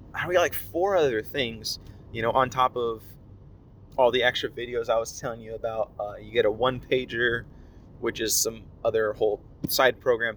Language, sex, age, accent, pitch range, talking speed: English, male, 30-49, American, 115-170 Hz, 205 wpm